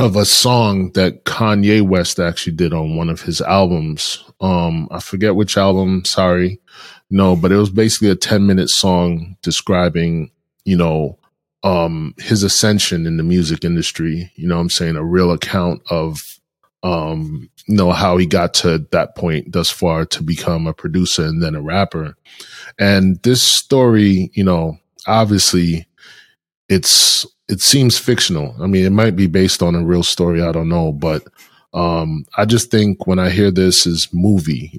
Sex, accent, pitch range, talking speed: male, American, 85-100 Hz, 170 wpm